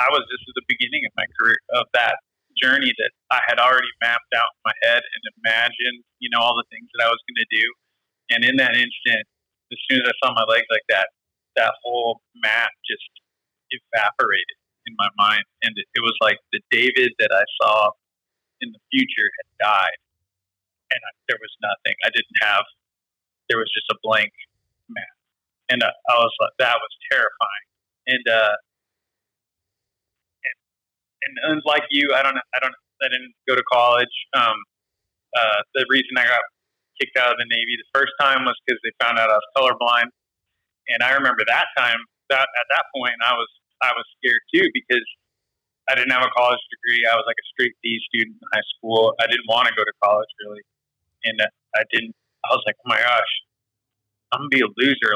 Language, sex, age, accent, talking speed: English, male, 30-49, American, 195 wpm